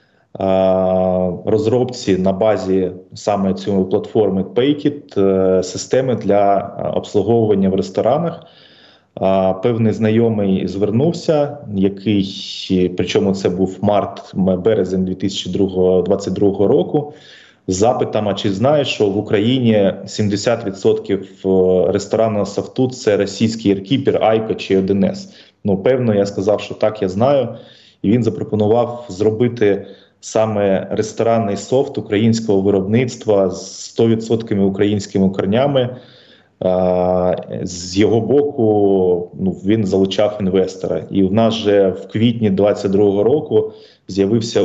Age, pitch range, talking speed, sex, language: 20-39, 95-110 Hz, 100 wpm, male, Ukrainian